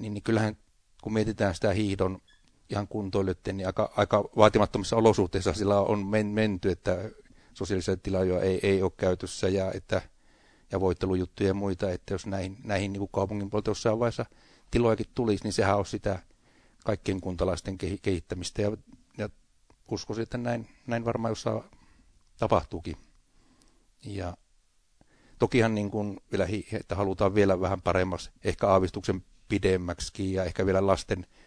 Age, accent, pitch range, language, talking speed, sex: 60-79, native, 90-105 Hz, Finnish, 140 wpm, male